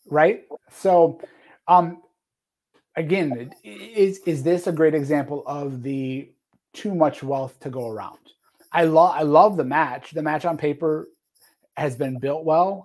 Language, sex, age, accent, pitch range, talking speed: English, male, 30-49, American, 130-165 Hz, 150 wpm